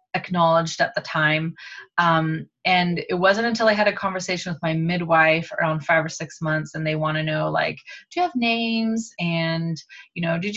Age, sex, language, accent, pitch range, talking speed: 20-39, female, English, American, 160-210 Hz, 200 wpm